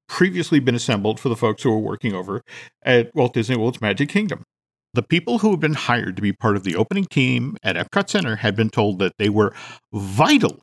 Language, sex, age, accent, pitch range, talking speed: English, male, 50-69, American, 115-165 Hz, 220 wpm